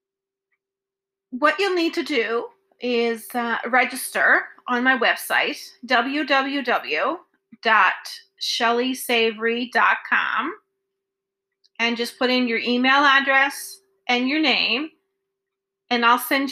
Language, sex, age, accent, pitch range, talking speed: English, female, 30-49, American, 240-355 Hz, 90 wpm